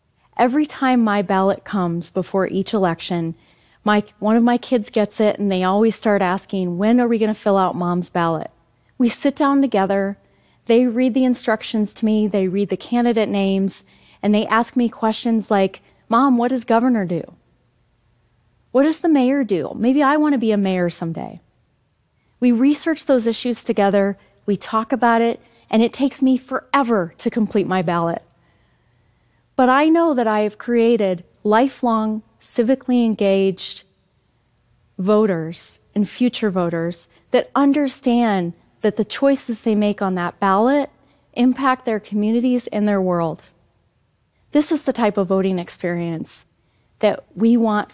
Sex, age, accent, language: female, 30-49, American, Korean